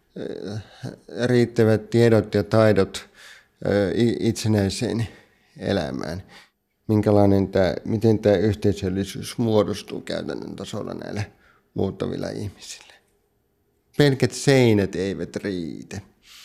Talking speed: 75 wpm